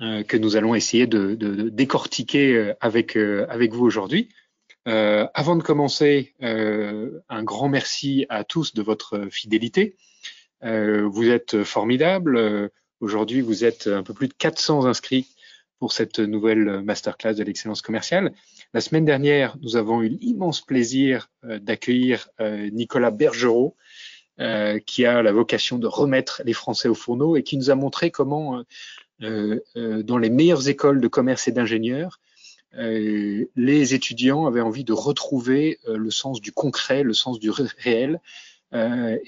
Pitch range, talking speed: 110-135 Hz, 155 wpm